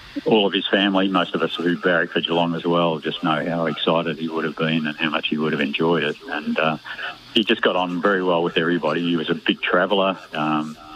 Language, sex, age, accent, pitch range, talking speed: English, male, 50-69, Australian, 75-85 Hz, 245 wpm